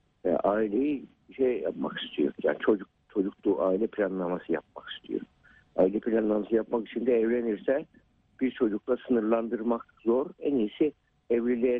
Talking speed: 120 wpm